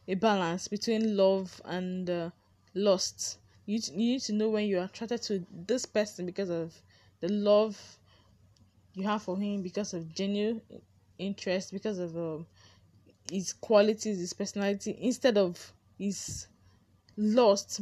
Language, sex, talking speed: English, female, 140 wpm